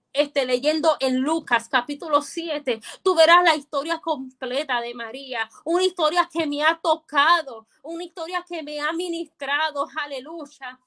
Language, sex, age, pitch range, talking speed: Spanish, female, 20-39, 255-320 Hz, 145 wpm